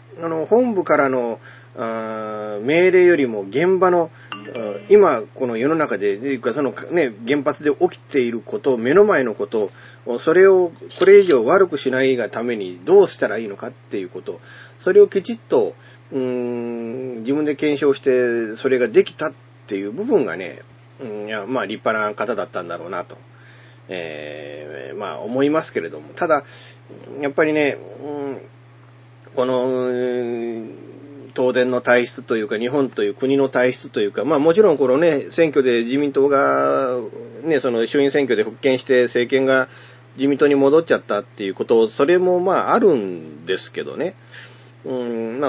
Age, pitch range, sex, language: 40-59, 120-155 Hz, male, Japanese